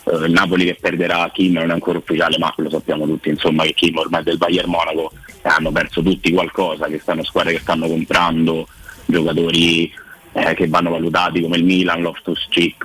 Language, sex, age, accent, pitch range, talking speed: Italian, male, 30-49, native, 85-90 Hz, 185 wpm